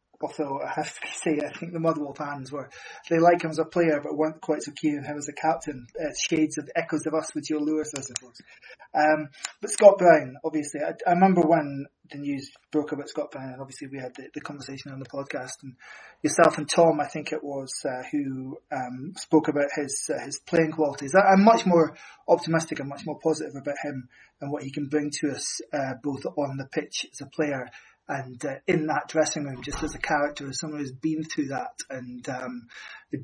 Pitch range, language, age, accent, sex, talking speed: 140-160 Hz, English, 20-39, British, male, 220 wpm